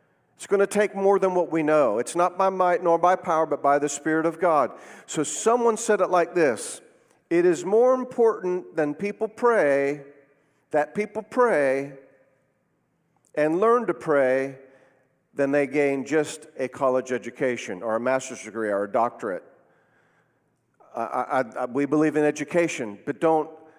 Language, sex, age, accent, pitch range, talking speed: English, male, 50-69, American, 135-170 Hz, 155 wpm